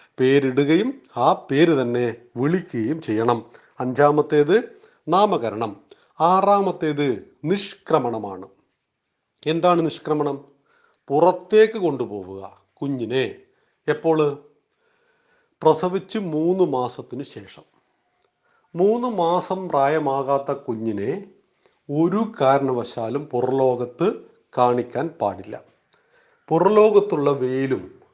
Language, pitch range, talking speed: Malayalam, 130-185 Hz, 65 wpm